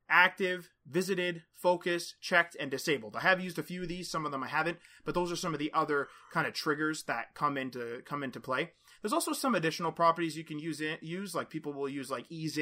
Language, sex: English, male